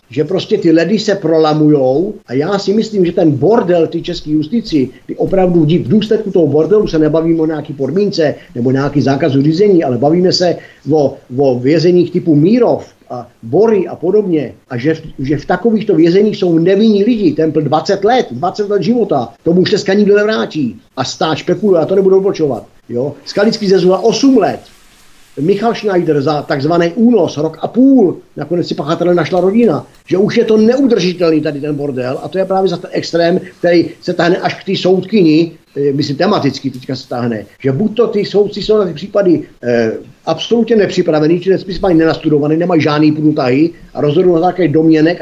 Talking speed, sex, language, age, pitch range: 185 wpm, male, Czech, 50-69, 155-195 Hz